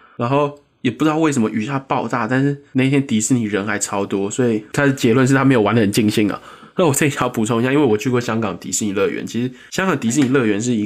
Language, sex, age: Chinese, male, 20-39